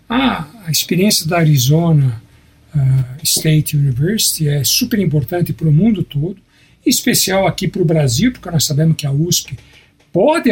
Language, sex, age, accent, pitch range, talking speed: Portuguese, male, 60-79, Brazilian, 150-210 Hz, 155 wpm